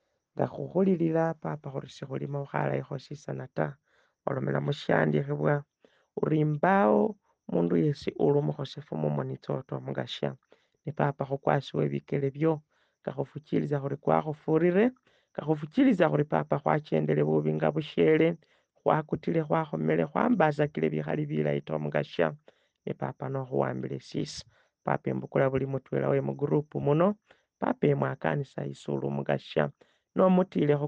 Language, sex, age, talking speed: English, male, 40-59, 140 wpm